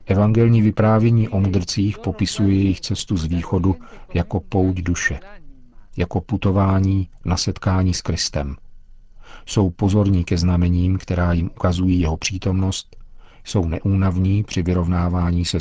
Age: 50-69